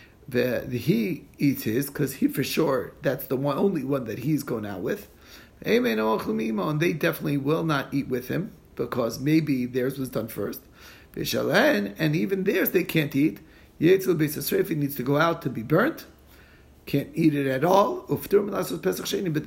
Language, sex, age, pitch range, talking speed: English, male, 40-59, 130-165 Hz, 155 wpm